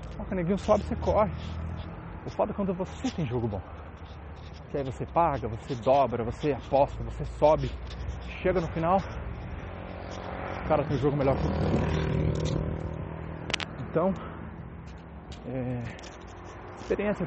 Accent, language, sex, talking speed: Brazilian, English, male, 125 wpm